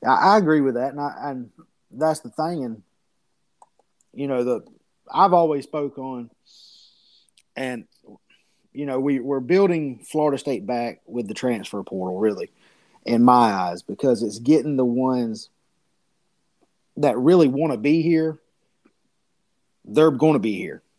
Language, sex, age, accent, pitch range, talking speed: English, male, 30-49, American, 125-150 Hz, 145 wpm